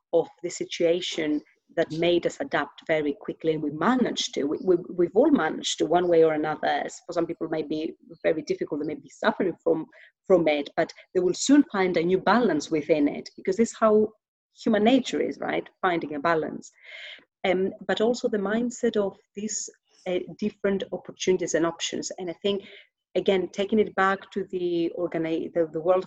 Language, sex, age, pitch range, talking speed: English, female, 30-49, 165-200 Hz, 200 wpm